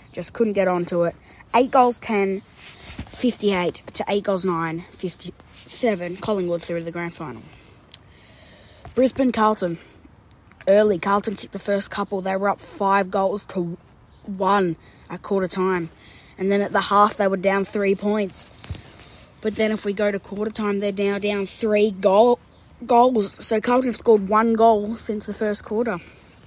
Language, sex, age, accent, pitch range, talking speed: English, female, 20-39, Australian, 185-215 Hz, 165 wpm